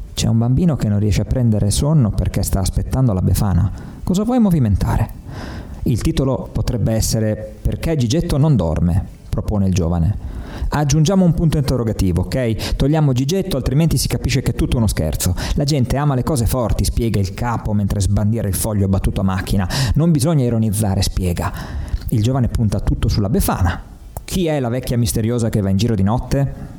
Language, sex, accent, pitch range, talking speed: Italian, male, native, 95-130 Hz, 180 wpm